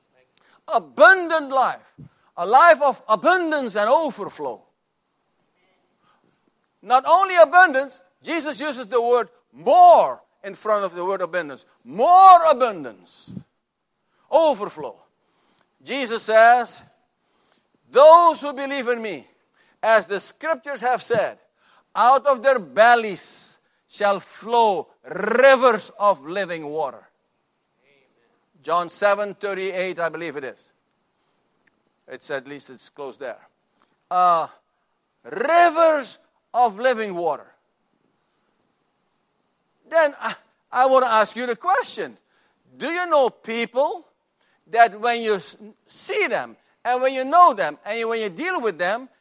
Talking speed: 110 wpm